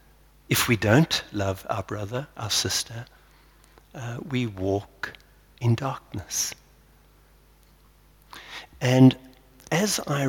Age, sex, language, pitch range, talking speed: 60-79, male, English, 100-125 Hz, 95 wpm